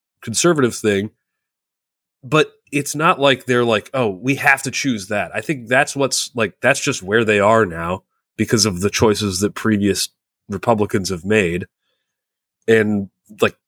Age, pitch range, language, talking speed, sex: 30-49, 100-130 Hz, English, 160 wpm, male